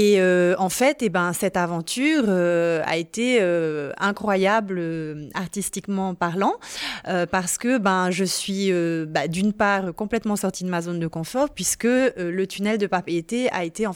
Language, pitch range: French, 170-210 Hz